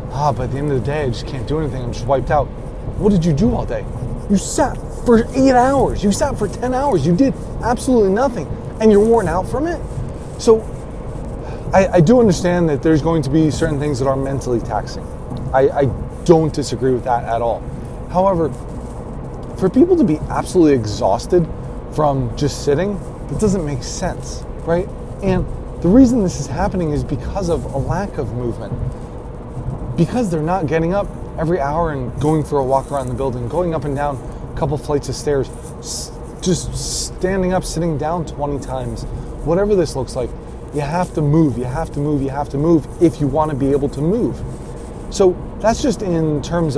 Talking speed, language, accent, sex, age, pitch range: 200 wpm, English, American, male, 20-39, 130-180 Hz